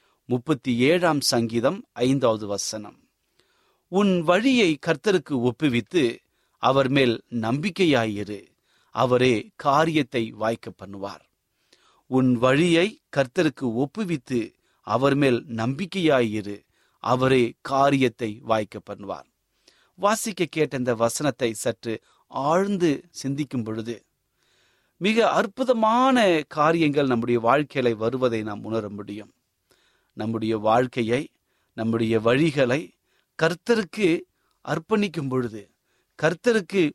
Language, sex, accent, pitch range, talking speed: Tamil, male, native, 115-165 Hz, 65 wpm